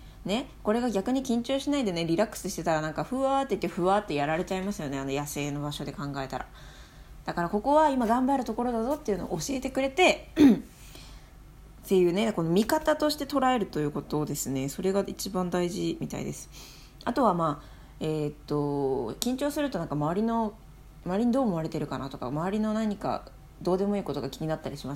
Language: Japanese